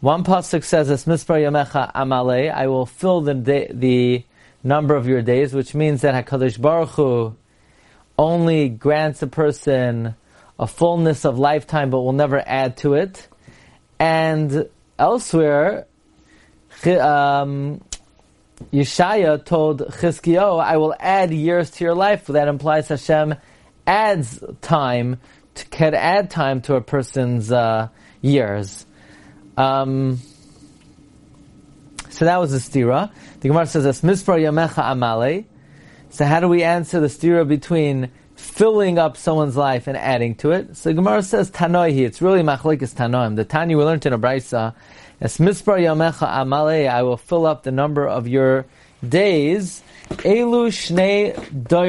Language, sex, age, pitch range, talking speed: English, male, 30-49, 130-165 Hz, 135 wpm